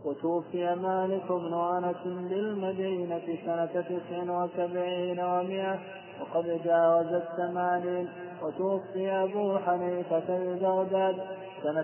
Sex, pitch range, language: male, 180-195 Hz, Arabic